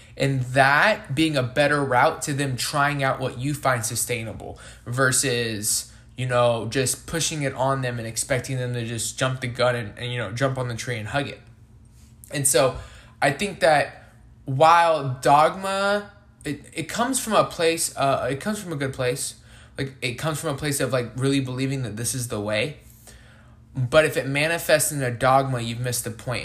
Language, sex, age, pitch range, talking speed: English, male, 20-39, 115-140 Hz, 195 wpm